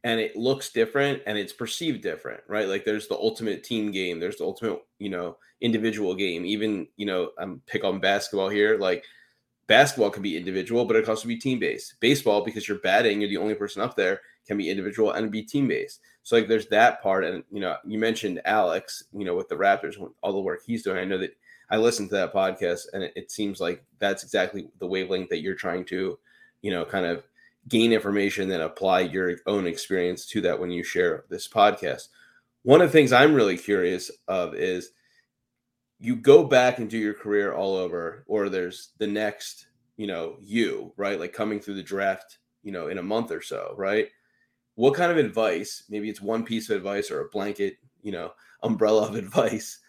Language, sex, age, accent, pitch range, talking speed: English, male, 20-39, American, 105-170 Hz, 210 wpm